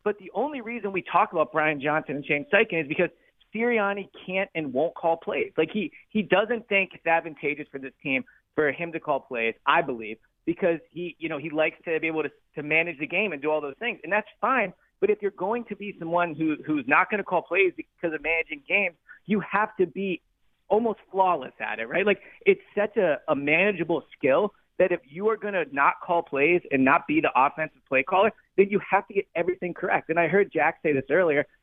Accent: American